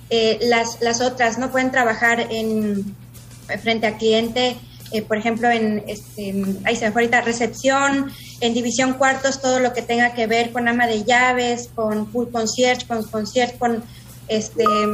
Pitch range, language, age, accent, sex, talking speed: 225-260 Hz, Spanish, 20-39, Mexican, female, 170 wpm